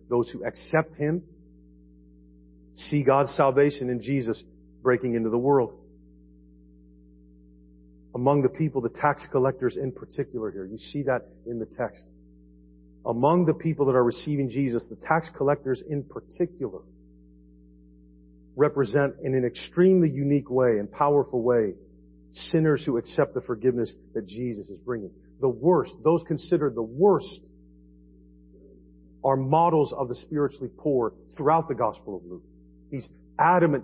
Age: 40-59